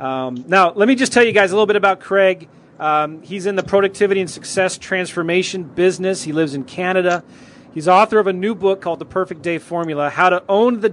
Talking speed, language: 225 wpm, English